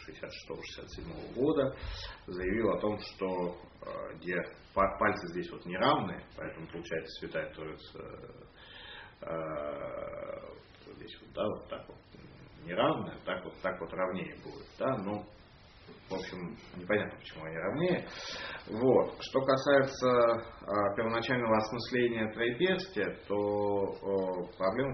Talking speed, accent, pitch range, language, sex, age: 110 wpm, native, 90-115 Hz, Russian, male, 30-49